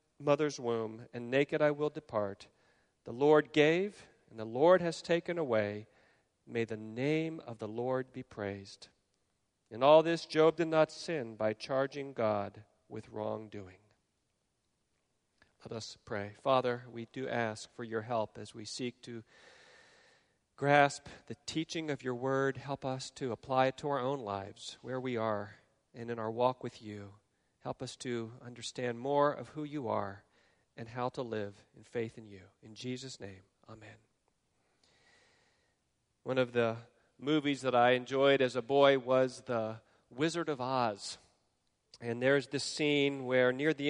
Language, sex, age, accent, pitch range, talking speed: English, male, 40-59, American, 110-145 Hz, 160 wpm